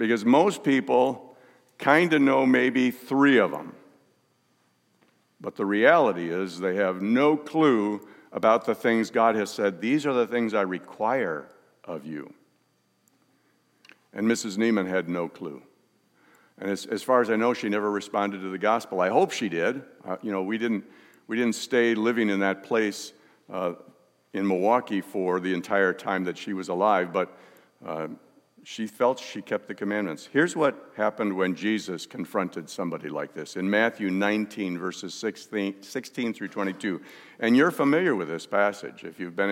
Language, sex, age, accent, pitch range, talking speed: English, male, 60-79, American, 100-125 Hz, 170 wpm